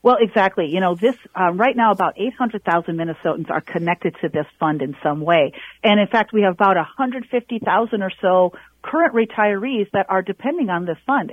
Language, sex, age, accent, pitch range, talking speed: English, female, 40-59, American, 185-255 Hz, 190 wpm